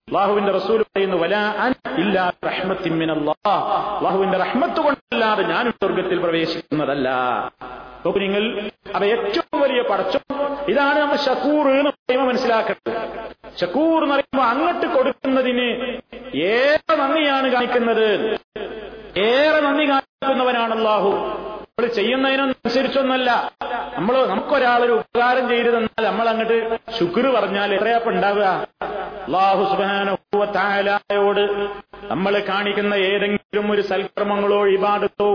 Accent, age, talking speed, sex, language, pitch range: native, 30-49, 70 wpm, male, Malayalam, 200-230 Hz